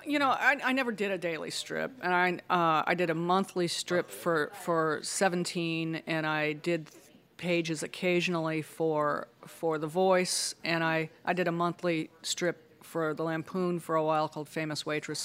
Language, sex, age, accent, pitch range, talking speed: English, female, 40-59, American, 155-185 Hz, 175 wpm